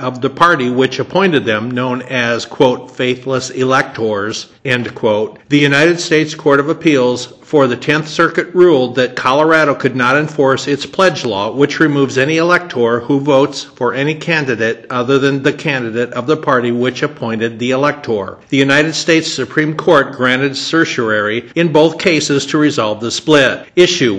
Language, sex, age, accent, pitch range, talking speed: English, male, 50-69, American, 125-155 Hz, 165 wpm